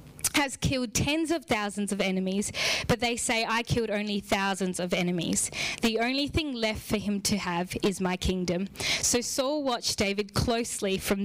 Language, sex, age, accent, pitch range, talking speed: English, female, 10-29, Australian, 200-240 Hz, 175 wpm